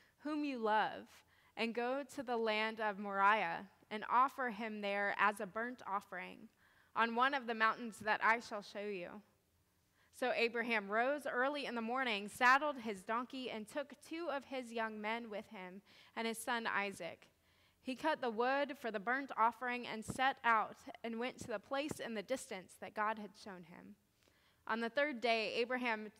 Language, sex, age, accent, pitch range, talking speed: English, female, 20-39, American, 210-260 Hz, 185 wpm